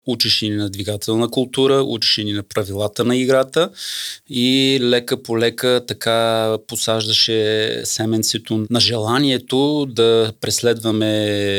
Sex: male